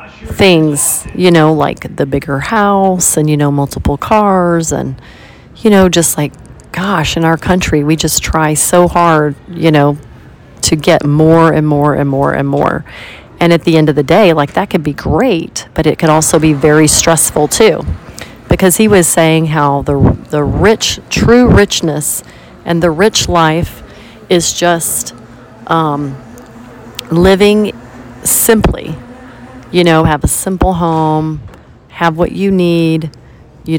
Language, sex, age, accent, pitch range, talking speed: English, female, 40-59, American, 145-175 Hz, 155 wpm